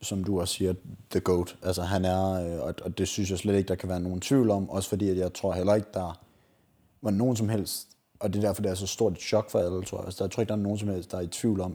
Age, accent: 30-49, native